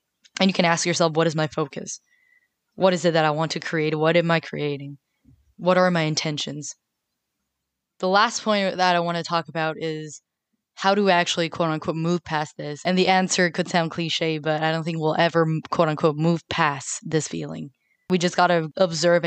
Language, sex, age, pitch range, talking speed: English, female, 10-29, 155-180 Hz, 210 wpm